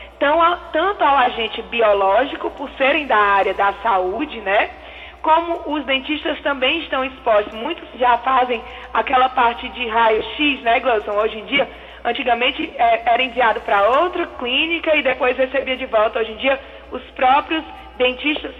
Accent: Brazilian